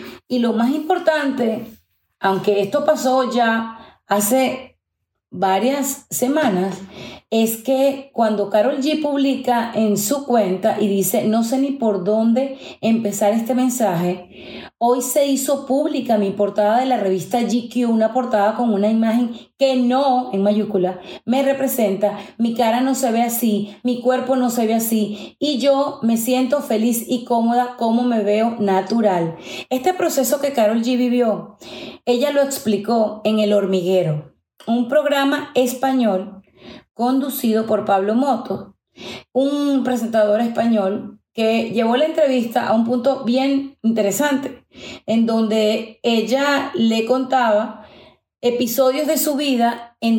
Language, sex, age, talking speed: Spanish, female, 30-49, 135 wpm